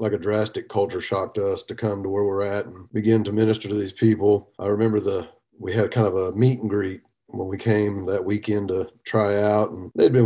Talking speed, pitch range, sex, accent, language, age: 245 wpm, 105-125 Hz, male, American, English, 50-69